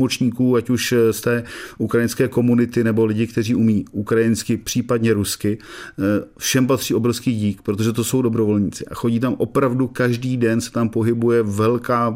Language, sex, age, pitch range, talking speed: Czech, male, 40-59, 110-125 Hz, 155 wpm